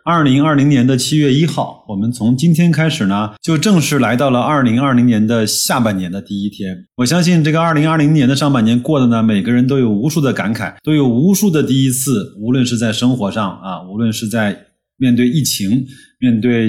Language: Chinese